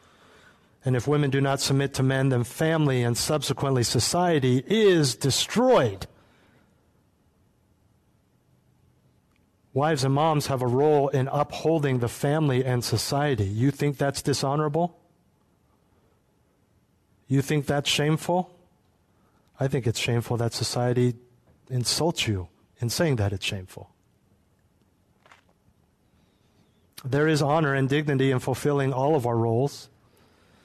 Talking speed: 115 wpm